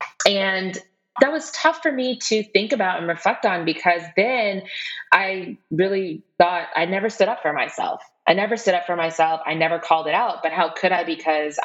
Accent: American